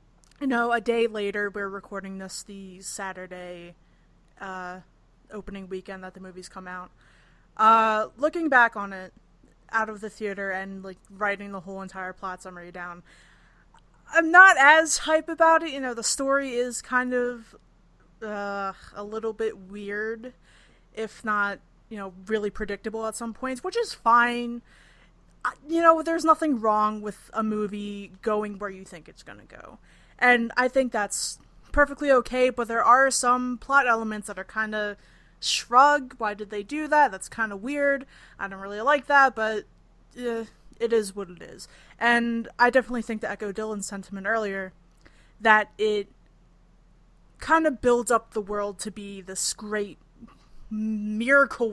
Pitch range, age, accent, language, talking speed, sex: 200-250 Hz, 20-39, American, English, 165 wpm, female